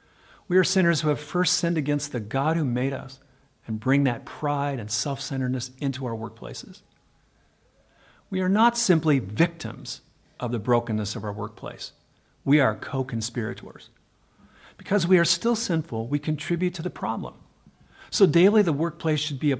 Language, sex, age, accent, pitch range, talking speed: English, male, 50-69, American, 120-155 Hz, 160 wpm